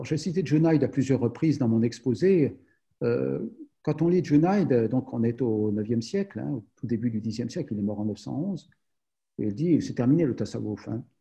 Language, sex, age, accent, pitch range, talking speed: French, male, 50-69, French, 120-155 Hz, 225 wpm